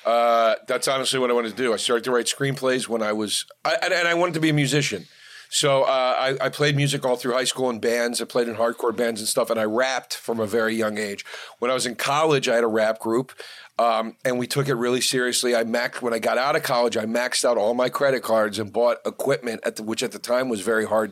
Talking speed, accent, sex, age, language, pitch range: 270 wpm, American, male, 40-59, English, 115-135 Hz